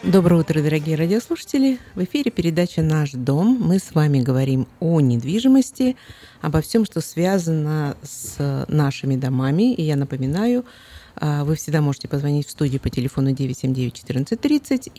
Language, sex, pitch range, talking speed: Russian, female, 140-190 Hz, 150 wpm